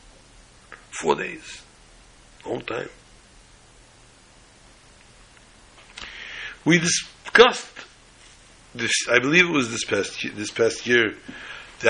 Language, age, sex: English, 60-79, male